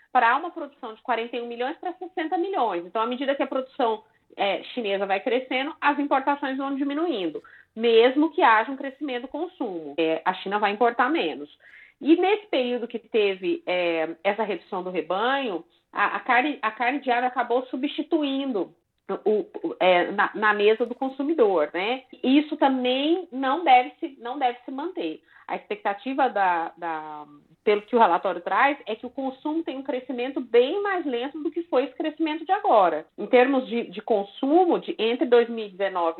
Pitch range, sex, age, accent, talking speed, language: 215-300 Hz, female, 30-49, Brazilian, 170 wpm, Portuguese